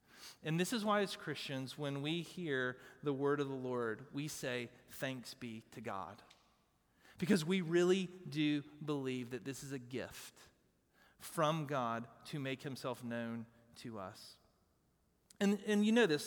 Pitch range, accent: 130-170 Hz, American